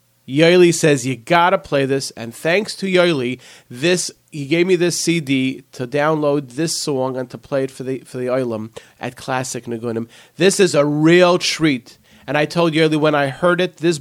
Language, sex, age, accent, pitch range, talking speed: English, male, 30-49, American, 135-175 Hz, 200 wpm